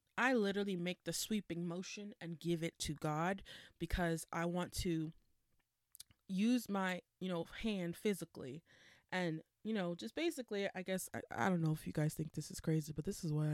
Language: English